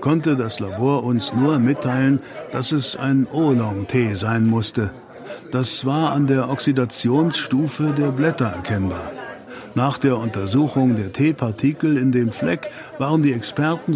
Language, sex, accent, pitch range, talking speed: German, male, German, 115-140 Hz, 140 wpm